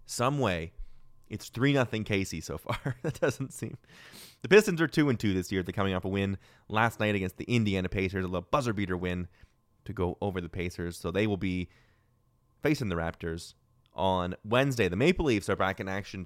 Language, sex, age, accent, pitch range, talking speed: English, male, 20-39, American, 95-120 Hz, 190 wpm